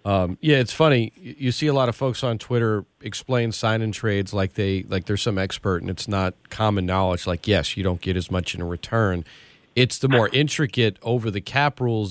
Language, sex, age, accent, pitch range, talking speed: English, male, 40-59, American, 95-125 Hz, 250 wpm